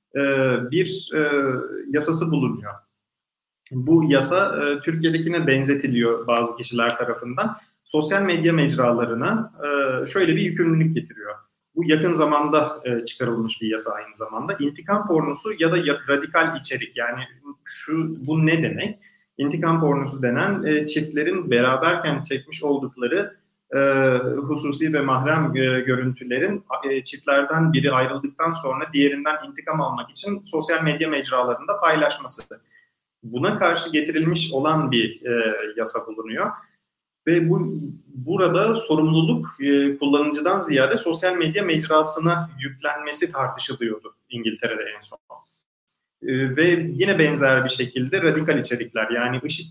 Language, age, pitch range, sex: Turkish, 30-49, 130-165 Hz, male